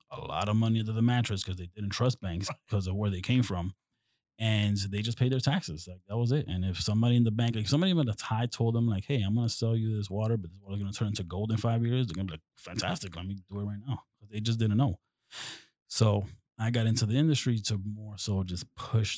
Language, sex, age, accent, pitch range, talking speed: English, male, 30-49, American, 95-115 Hz, 270 wpm